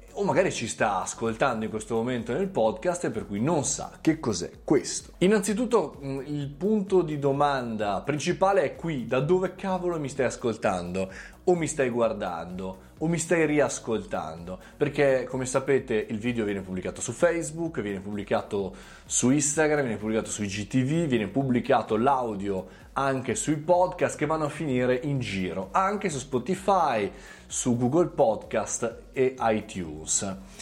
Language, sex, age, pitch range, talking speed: Italian, male, 20-39, 115-160 Hz, 150 wpm